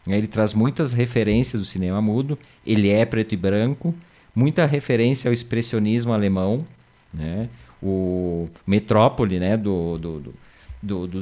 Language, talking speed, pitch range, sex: Portuguese, 135 wpm, 105-135 Hz, male